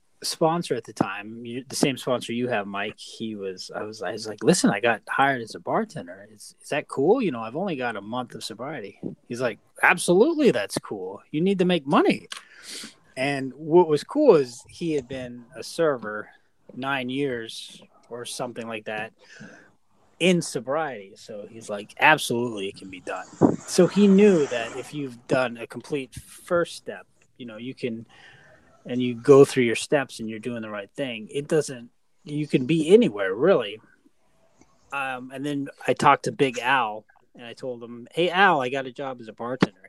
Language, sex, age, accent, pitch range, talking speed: English, male, 20-39, American, 120-175 Hz, 195 wpm